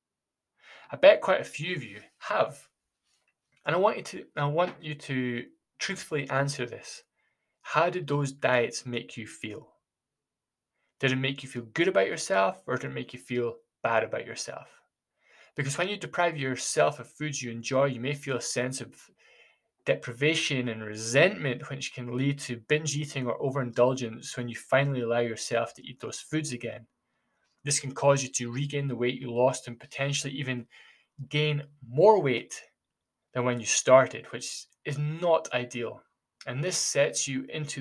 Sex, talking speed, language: male, 175 wpm, English